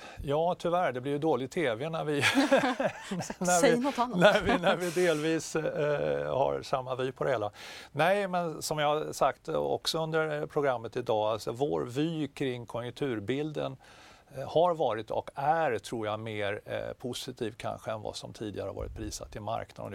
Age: 50-69